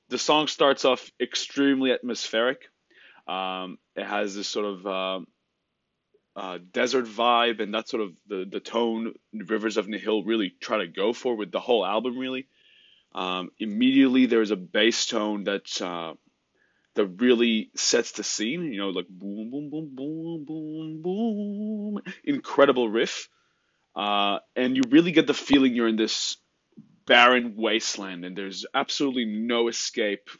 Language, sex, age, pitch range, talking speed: English, male, 20-39, 105-135 Hz, 155 wpm